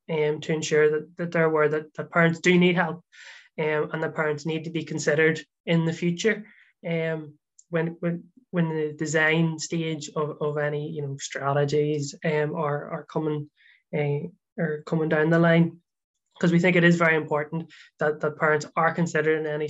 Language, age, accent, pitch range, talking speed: English, 20-39, Irish, 150-165 Hz, 190 wpm